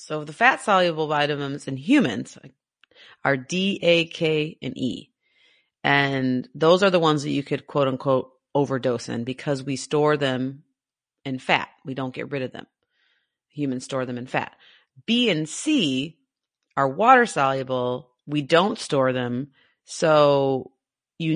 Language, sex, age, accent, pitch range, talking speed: English, female, 30-49, American, 130-160 Hz, 150 wpm